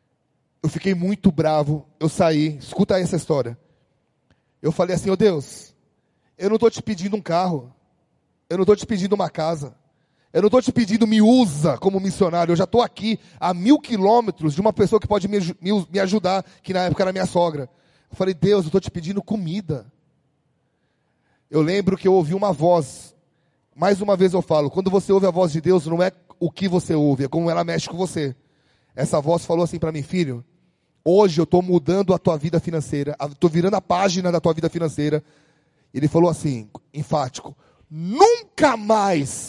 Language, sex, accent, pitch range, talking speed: Portuguese, male, Brazilian, 150-195 Hz, 195 wpm